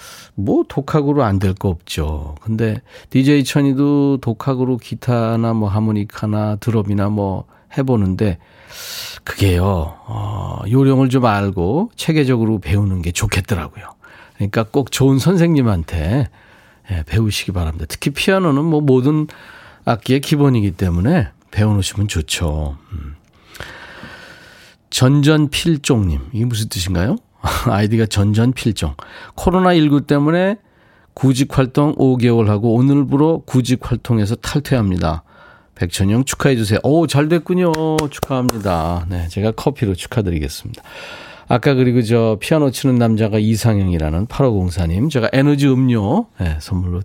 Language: Korean